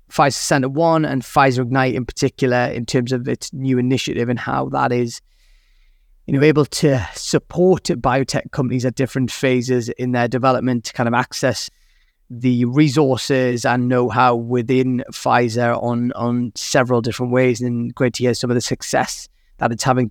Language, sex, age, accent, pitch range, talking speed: English, male, 20-39, British, 120-130 Hz, 170 wpm